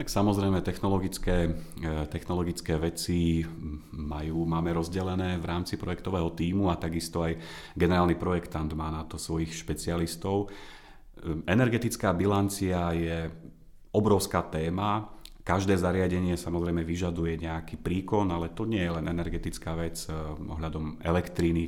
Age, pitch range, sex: 30-49, 80-95 Hz, male